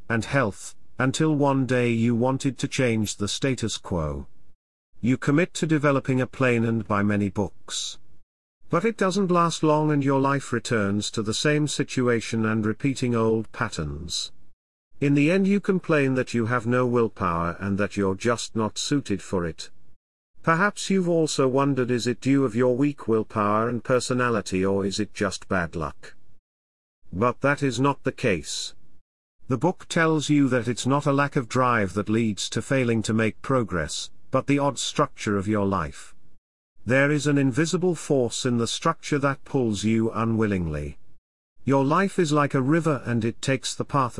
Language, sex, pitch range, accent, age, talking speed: English, male, 105-140 Hz, British, 50-69, 175 wpm